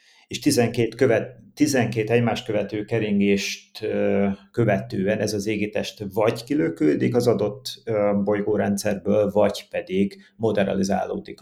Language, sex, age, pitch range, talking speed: Hungarian, male, 30-49, 95-120 Hz, 100 wpm